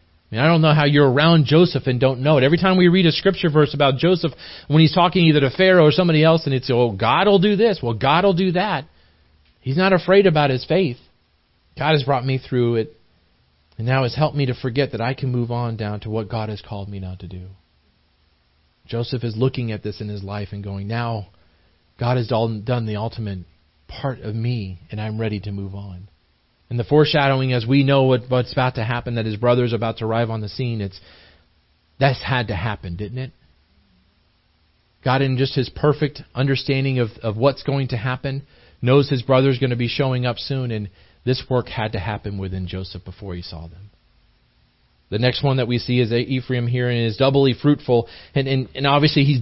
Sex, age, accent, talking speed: male, 40-59, American, 215 wpm